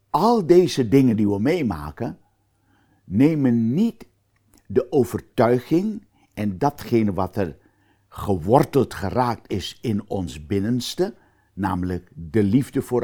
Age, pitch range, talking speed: 60-79, 100-130 Hz, 110 wpm